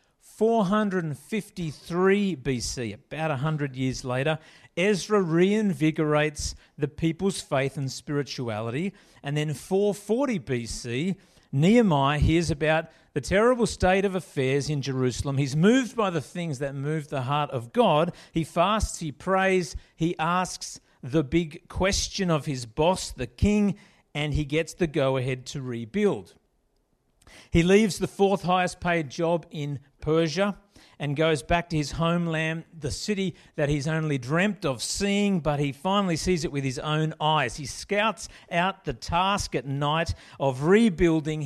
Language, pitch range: English, 140-185 Hz